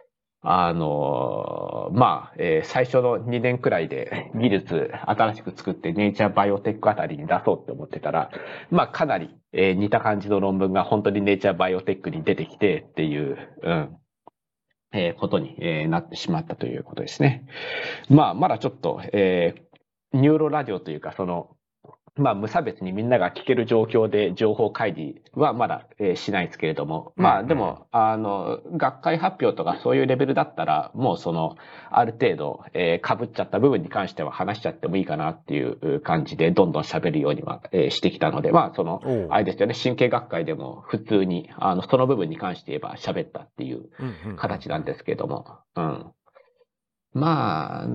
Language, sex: Japanese, male